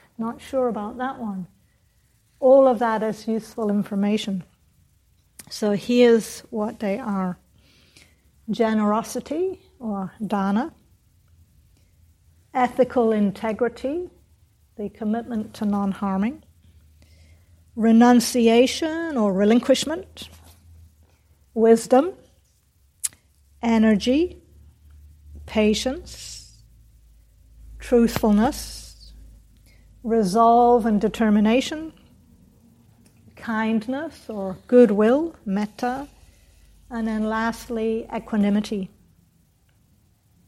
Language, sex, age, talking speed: English, female, 50-69, 65 wpm